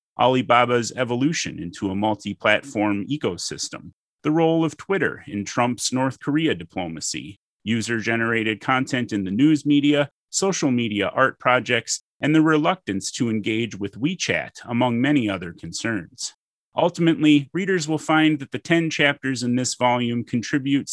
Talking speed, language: 140 wpm, English